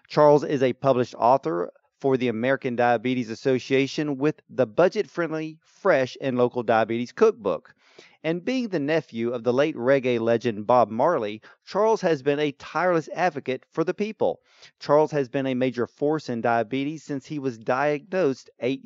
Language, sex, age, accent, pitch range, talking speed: English, male, 40-59, American, 125-165 Hz, 160 wpm